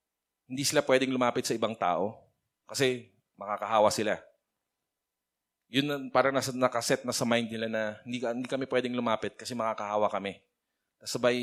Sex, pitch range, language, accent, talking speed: male, 110-130 Hz, English, Filipino, 145 wpm